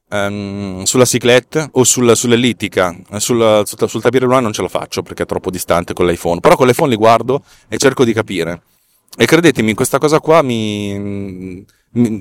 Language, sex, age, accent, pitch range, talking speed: Italian, male, 30-49, native, 105-135 Hz, 180 wpm